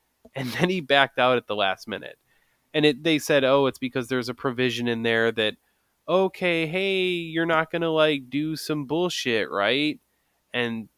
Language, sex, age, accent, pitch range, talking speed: English, male, 20-39, American, 115-155 Hz, 185 wpm